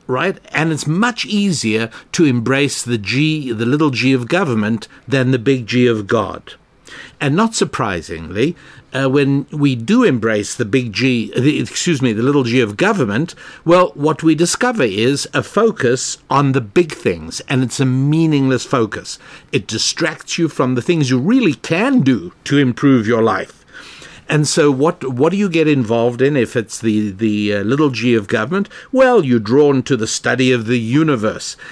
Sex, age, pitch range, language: male, 60-79, 115-145 Hz, English